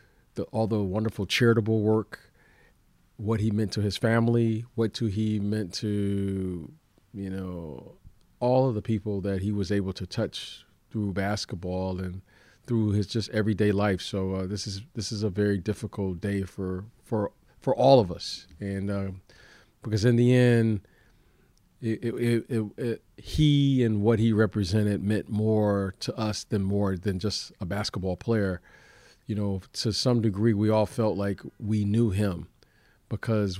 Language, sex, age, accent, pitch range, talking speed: English, male, 40-59, American, 100-115 Hz, 165 wpm